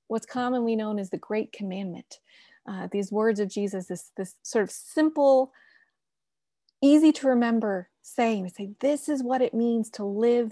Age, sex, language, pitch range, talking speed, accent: 30-49, female, English, 215-290 Hz, 165 wpm, American